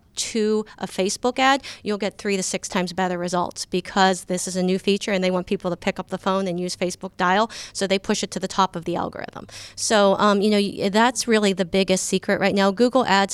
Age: 30-49